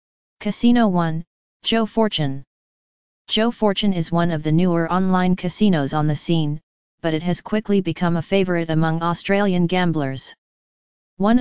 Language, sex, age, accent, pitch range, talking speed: English, female, 30-49, American, 165-195 Hz, 140 wpm